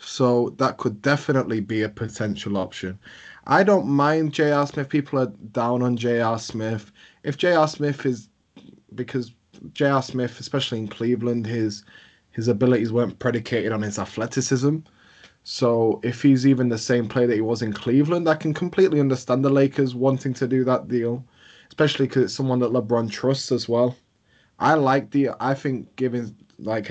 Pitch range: 110-130 Hz